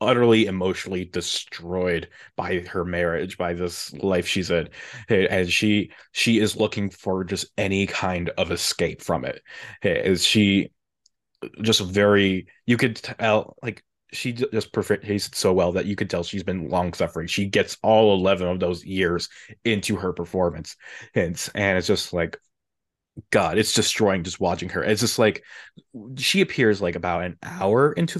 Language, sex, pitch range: English, male, 95-120 Hz